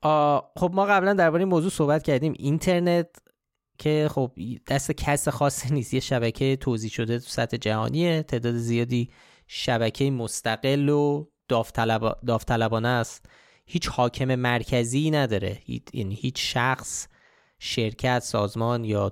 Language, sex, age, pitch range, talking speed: Persian, male, 20-39, 115-150 Hz, 120 wpm